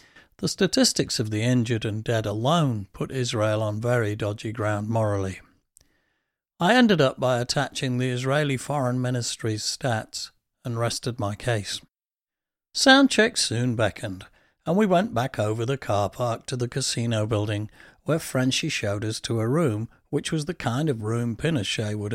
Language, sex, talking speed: English, male, 165 wpm